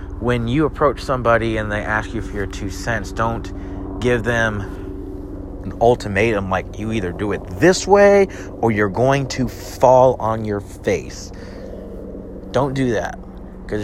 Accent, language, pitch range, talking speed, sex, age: American, English, 90-110 Hz, 155 wpm, male, 30-49